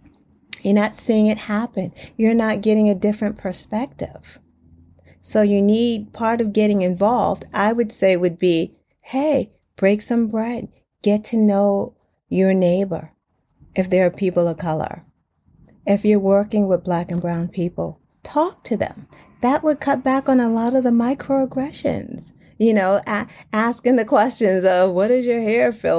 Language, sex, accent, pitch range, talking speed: English, female, American, 185-245 Hz, 165 wpm